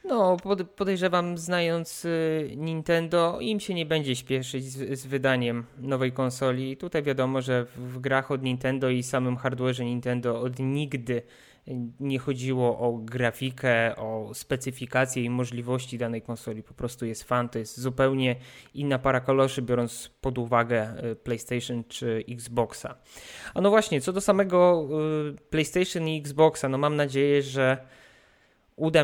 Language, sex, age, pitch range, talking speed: Polish, male, 20-39, 125-145 Hz, 135 wpm